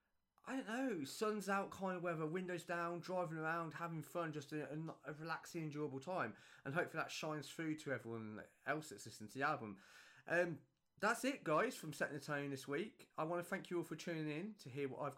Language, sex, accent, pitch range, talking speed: English, male, British, 135-170 Hz, 220 wpm